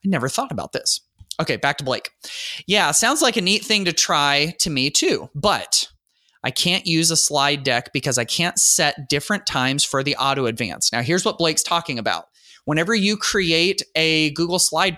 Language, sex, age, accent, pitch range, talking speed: English, male, 30-49, American, 135-170 Hz, 190 wpm